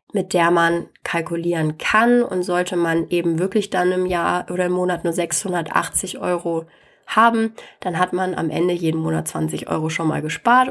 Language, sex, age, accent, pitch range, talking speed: German, female, 20-39, German, 165-200 Hz, 180 wpm